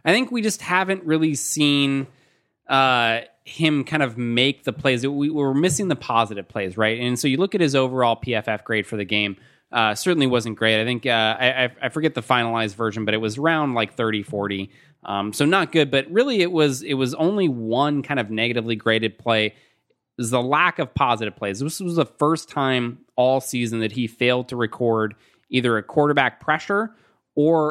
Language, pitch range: English, 115-150 Hz